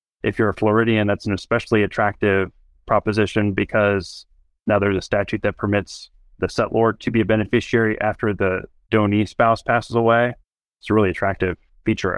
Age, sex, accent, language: 20-39, male, American, English